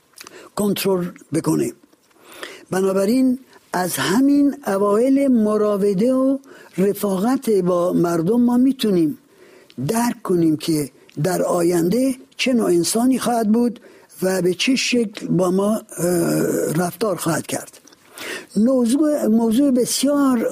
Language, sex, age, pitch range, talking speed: Persian, male, 60-79, 180-250 Hz, 100 wpm